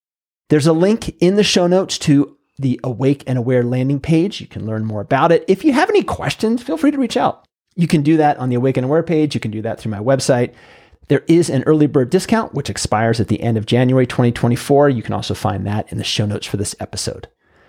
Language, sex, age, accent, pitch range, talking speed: English, male, 30-49, American, 110-155 Hz, 250 wpm